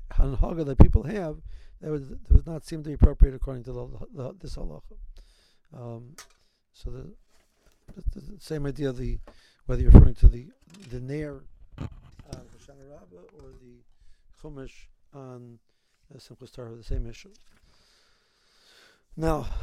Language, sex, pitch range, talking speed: English, male, 115-160 Hz, 135 wpm